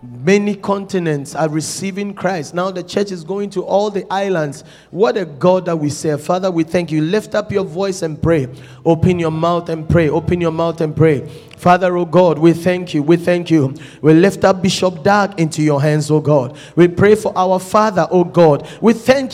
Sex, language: male, English